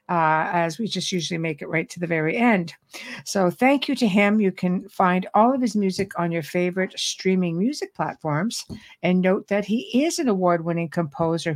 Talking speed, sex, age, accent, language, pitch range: 195 wpm, female, 60-79, American, English, 170-220 Hz